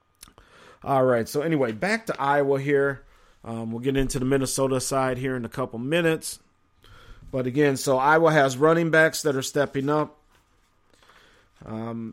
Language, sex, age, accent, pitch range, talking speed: English, male, 40-59, American, 120-140 Hz, 160 wpm